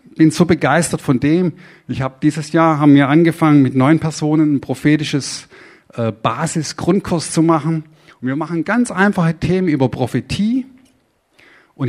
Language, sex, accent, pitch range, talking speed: German, male, German, 125-170 Hz, 150 wpm